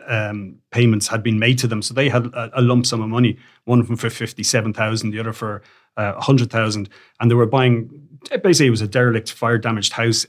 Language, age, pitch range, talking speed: English, 30-49, 115-125 Hz, 245 wpm